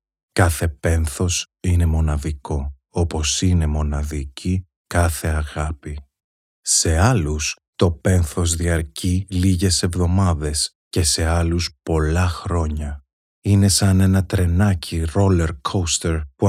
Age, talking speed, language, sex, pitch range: 30-49, 100 wpm, Greek, male, 75-90 Hz